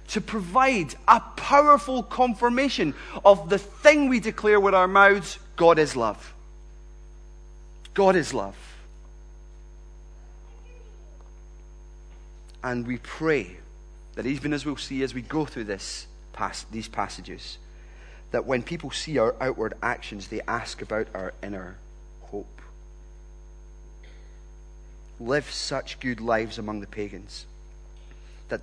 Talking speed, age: 115 wpm, 30-49